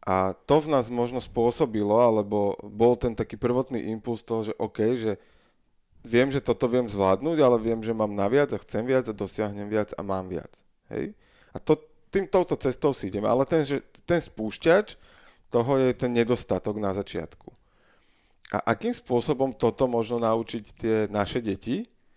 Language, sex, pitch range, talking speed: Slovak, male, 105-125 Hz, 170 wpm